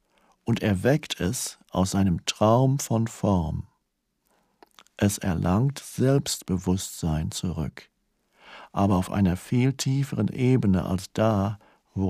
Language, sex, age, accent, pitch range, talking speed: German, male, 60-79, German, 95-120 Hz, 105 wpm